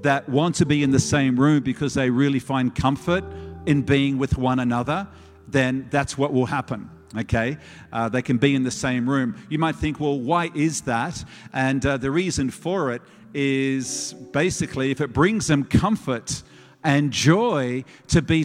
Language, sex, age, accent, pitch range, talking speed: English, male, 50-69, Australian, 130-165 Hz, 180 wpm